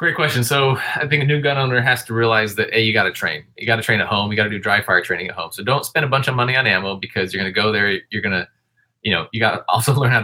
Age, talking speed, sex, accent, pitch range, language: 30-49, 345 wpm, male, American, 100-120 Hz, English